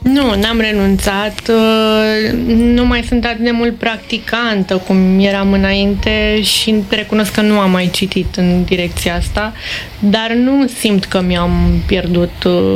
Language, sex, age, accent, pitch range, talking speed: Romanian, female, 20-39, native, 190-230 Hz, 135 wpm